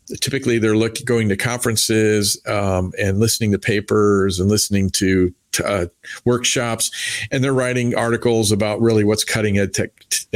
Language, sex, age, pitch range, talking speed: English, male, 40-59, 100-115 Hz, 150 wpm